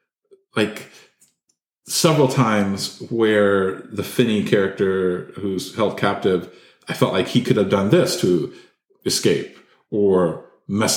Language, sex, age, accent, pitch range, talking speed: English, male, 40-59, American, 105-145 Hz, 120 wpm